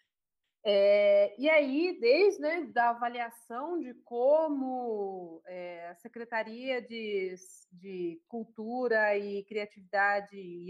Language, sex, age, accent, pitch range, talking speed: Portuguese, female, 30-49, Brazilian, 210-255 Hz, 90 wpm